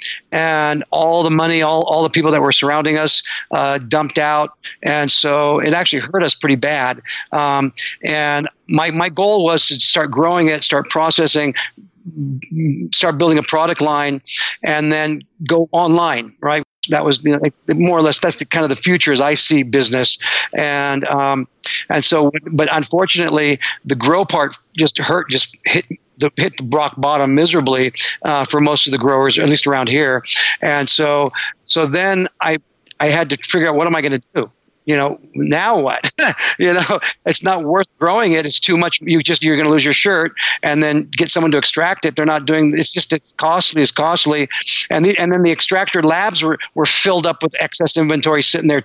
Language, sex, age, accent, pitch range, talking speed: English, male, 50-69, American, 145-170 Hz, 200 wpm